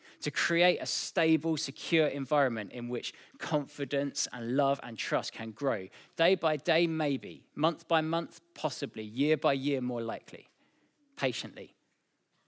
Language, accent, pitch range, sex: English, British, 120-155 Hz, male